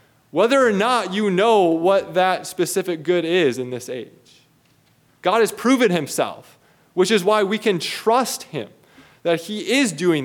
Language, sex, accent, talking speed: English, male, American, 160 wpm